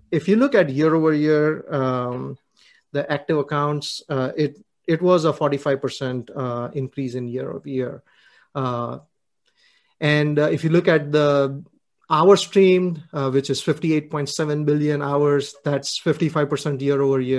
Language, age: English, 30-49